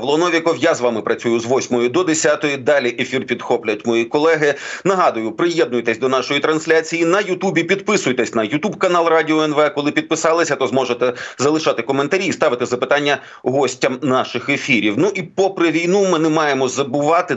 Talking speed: 160 wpm